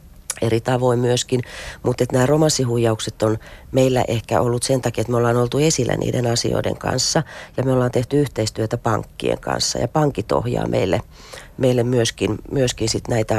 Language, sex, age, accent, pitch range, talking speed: Finnish, female, 30-49, native, 110-125 Hz, 160 wpm